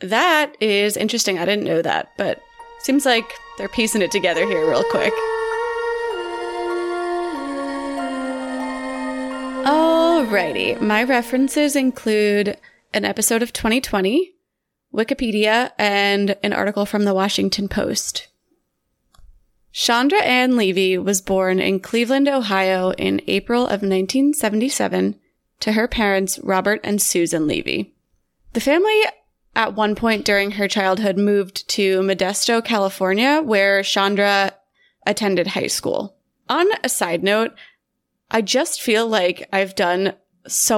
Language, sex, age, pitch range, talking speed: English, female, 20-39, 190-250 Hz, 120 wpm